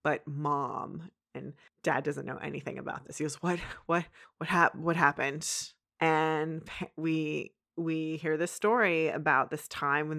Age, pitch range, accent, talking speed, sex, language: 20-39, 150-175 Hz, American, 160 wpm, female, English